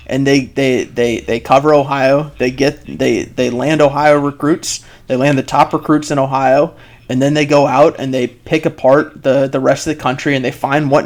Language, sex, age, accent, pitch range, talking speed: English, male, 30-49, American, 135-150 Hz, 215 wpm